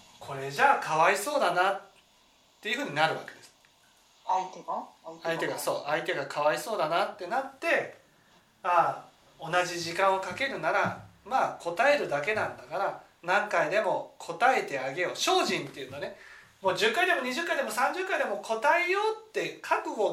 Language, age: Japanese, 40-59